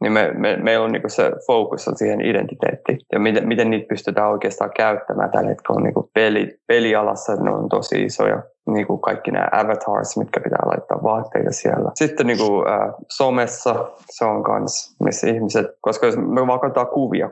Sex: male